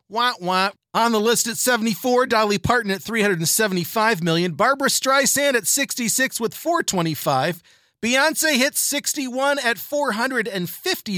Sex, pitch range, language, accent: male, 195-270 Hz, English, American